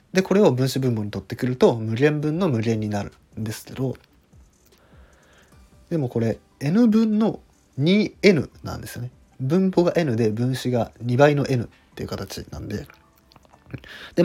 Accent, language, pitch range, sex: native, Japanese, 100-140 Hz, male